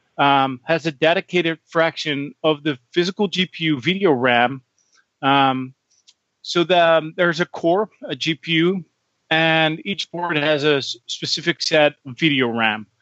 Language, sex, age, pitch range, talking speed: English, male, 30-49, 140-170 Hz, 145 wpm